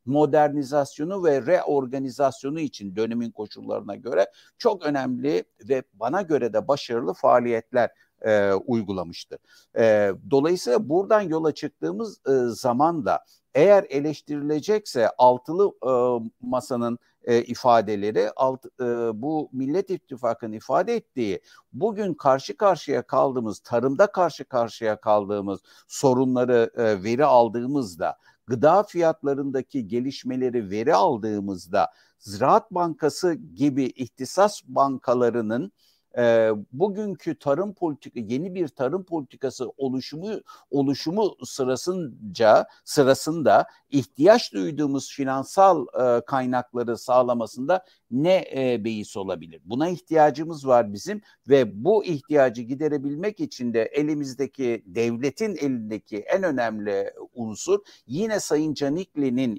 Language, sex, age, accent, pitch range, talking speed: Turkish, male, 60-79, native, 120-165 Hz, 100 wpm